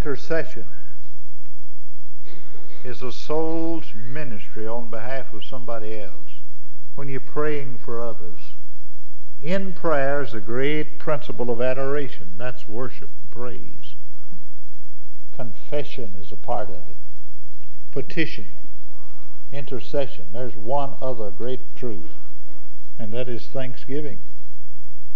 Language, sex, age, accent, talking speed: English, male, 60-79, American, 105 wpm